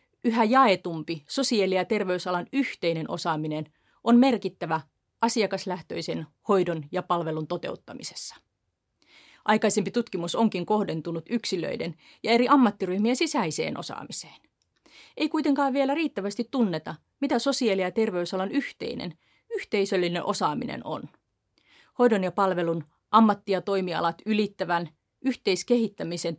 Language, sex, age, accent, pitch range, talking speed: Finnish, female, 30-49, native, 170-225 Hz, 100 wpm